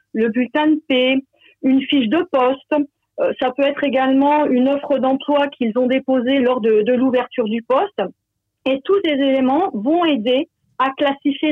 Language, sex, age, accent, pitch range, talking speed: French, female, 40-59, French, 230-290 Hz, 170 wpm